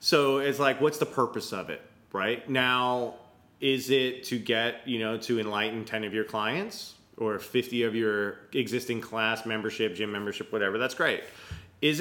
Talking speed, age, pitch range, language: 175 wpm, 30-49, 110-130 Hz, English